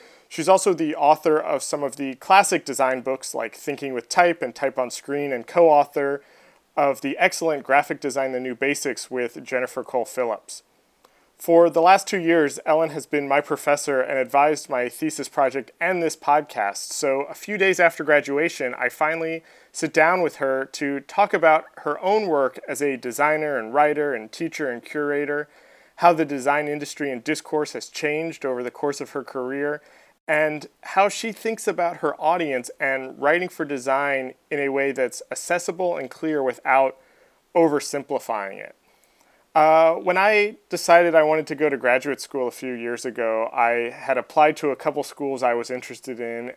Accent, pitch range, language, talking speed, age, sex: American, 130-160 Hz, English, 180 wpm, 30-49, male